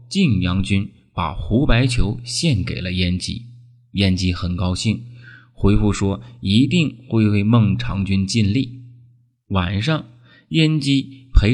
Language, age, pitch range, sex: Chinese, 20-39, 95-120 Hz, male